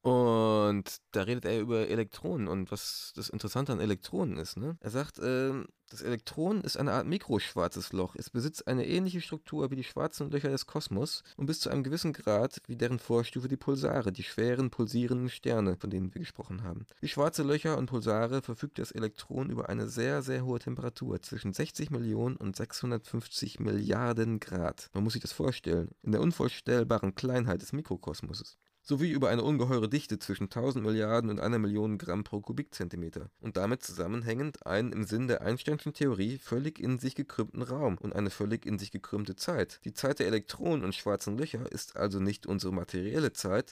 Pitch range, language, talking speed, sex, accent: 105-135 Hz, German, 185 wpm, male, German